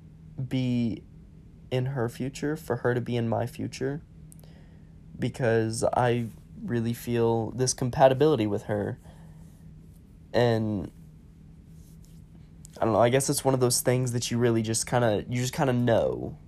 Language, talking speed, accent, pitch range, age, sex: English, 150 wpm, American, 100-125 Hz, 10-29, male